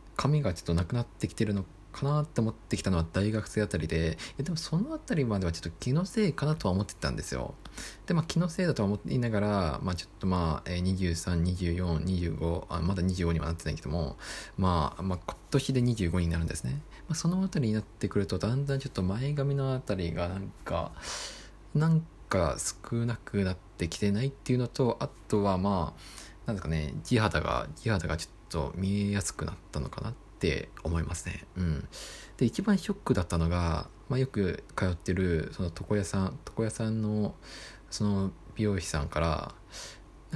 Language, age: Japanese, 20-39